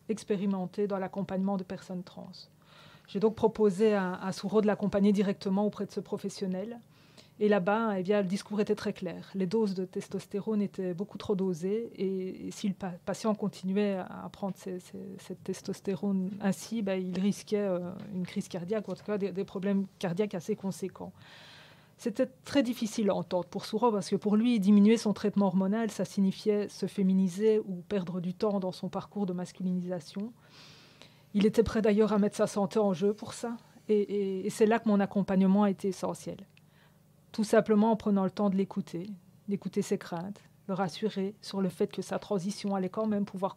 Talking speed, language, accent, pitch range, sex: 185 wpm, French, French, 185-210 Hz, female